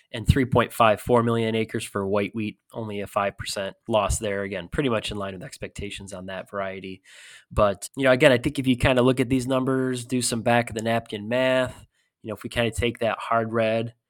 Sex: male